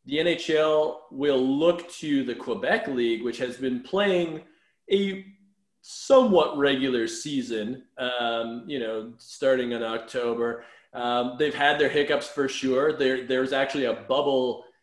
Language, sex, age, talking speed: English, male, 20-39, 135 wpm